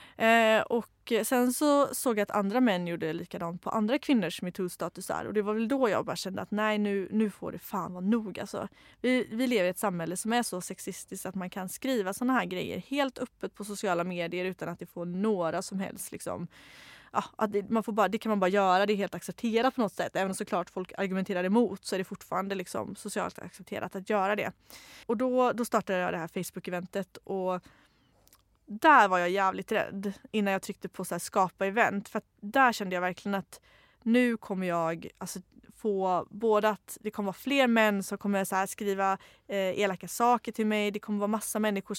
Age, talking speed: 20-39, 215 wpm